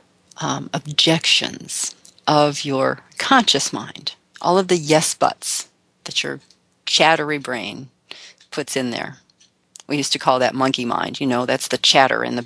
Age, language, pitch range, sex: 40-59, English, 135-185 Hz, female